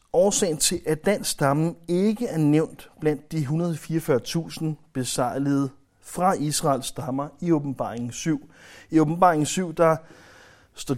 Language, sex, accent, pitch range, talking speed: Danish, male, native, 115-155 Hz, 125 wpm